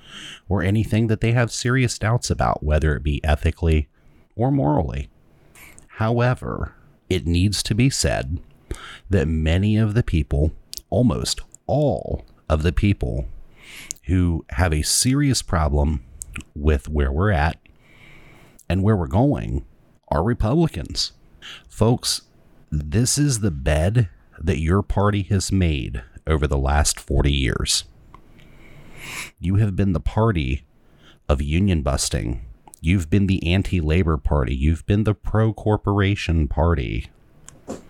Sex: male